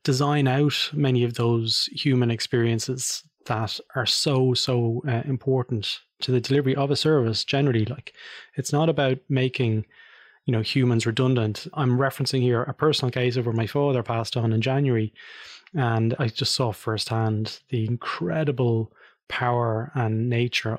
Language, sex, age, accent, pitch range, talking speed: English, male, 20-39, Irish, 115-135 Hz, 155 wpm